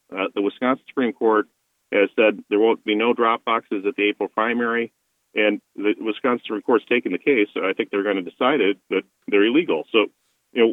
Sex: male